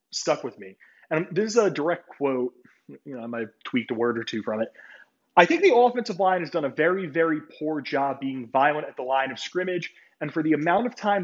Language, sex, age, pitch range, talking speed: English, male, 30-49, 135-195 Hz, 245 wpm